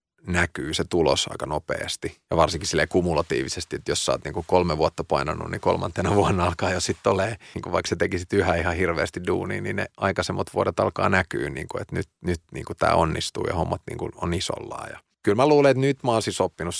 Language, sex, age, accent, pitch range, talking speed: Finnish, male, 30-49, native, 85-105 Hz, 210 wpm